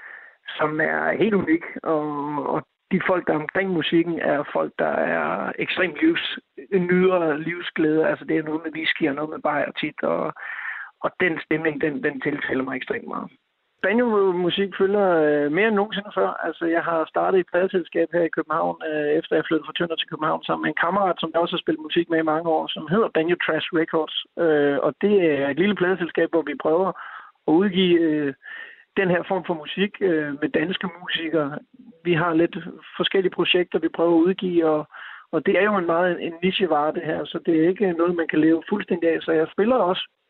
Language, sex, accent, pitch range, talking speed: Danish, male, native, 155-190 Hz, 210 wpm